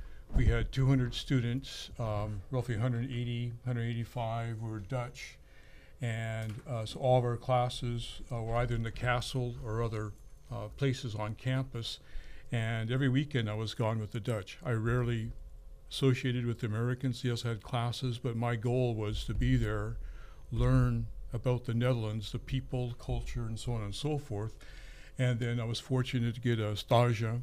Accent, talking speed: American, 170 wpm